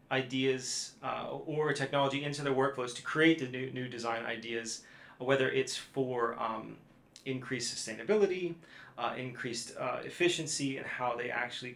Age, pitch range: 30-49, 120-140 Hz